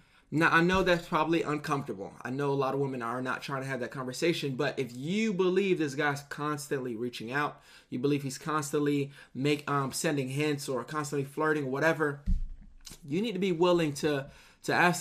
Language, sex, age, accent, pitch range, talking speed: English, male, 20-39, American, 135-155 Hz, 190 wpm